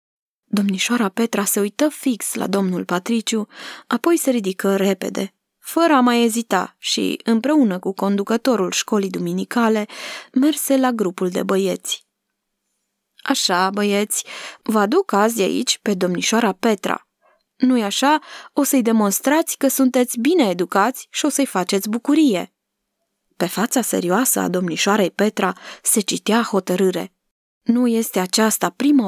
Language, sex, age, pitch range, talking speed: Romanian, female, 20-39, 190-255 Hz, 130 wpm